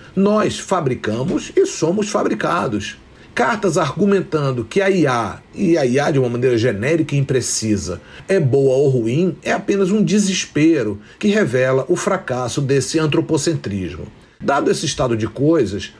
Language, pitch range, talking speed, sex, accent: Portuguese, 120-190 Hz, 145 wpm, male, Brazilian